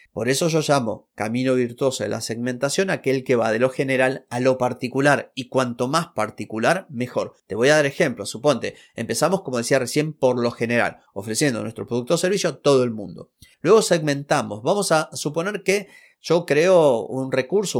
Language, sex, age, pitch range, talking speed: Spanish, male, 30-49, 120-160 Hz, 185 wpm